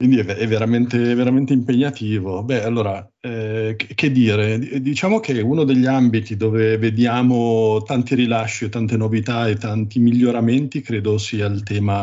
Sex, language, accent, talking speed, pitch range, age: male, Italian, native, 145 wpm, 105-125 Hz, 40-59